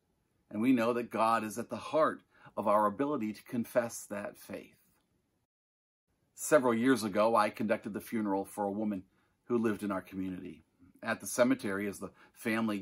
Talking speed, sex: 175 wpm, male